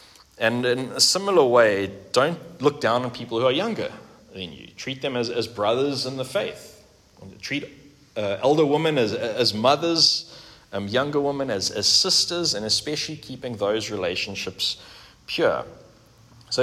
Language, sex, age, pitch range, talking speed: English, male, 30-49, 100-125 Hz, 160 wpm